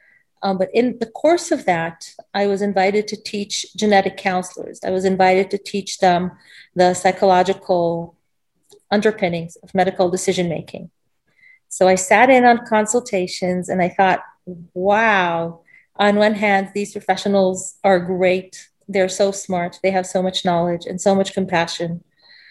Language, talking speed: English, 145 wpm